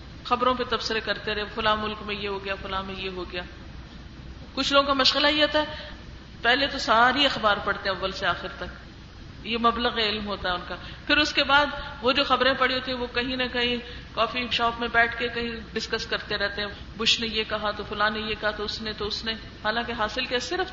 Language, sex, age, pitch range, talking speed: Urdu, female, 40-59, 210-270 Hz, 235 wpm